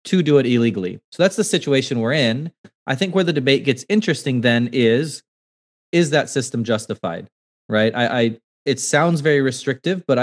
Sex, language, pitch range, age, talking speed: male, English, 115-140 Hz, 20-39, 180 wpm